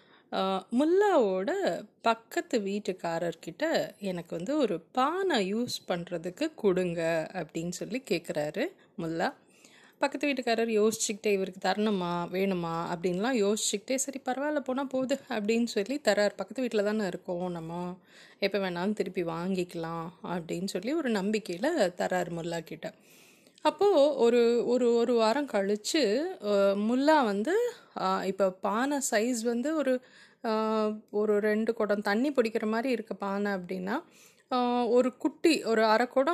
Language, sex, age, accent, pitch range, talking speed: English, female, 30-49, Indian, 190-260 Hz, 95 wpm